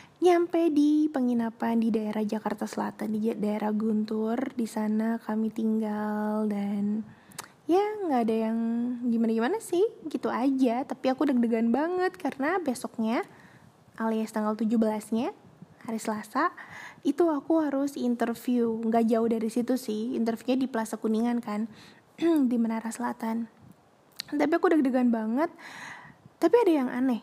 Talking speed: 130 wpm